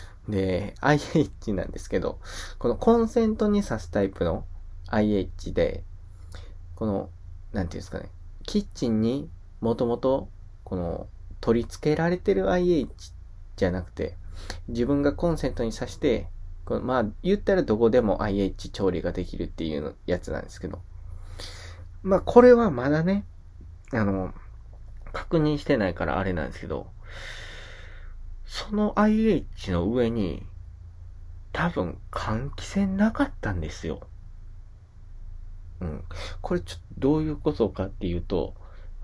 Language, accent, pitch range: Japanese, native, 90-115 Hz